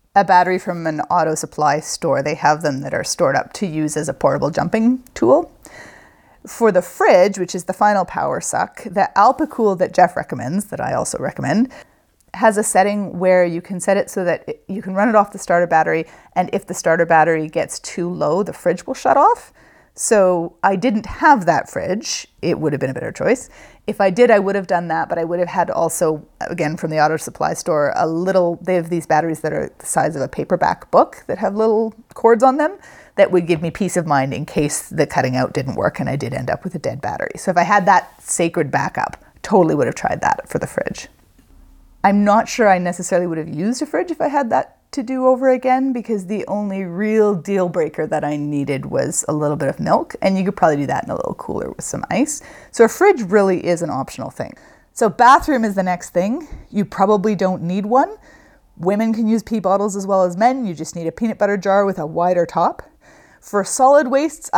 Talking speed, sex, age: 230 wpm, female, 30-49